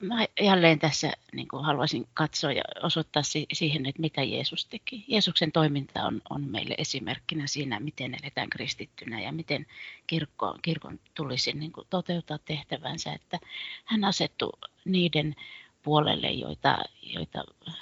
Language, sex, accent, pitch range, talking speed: Finnish, female, native, 135-165 Hz, 130 wpm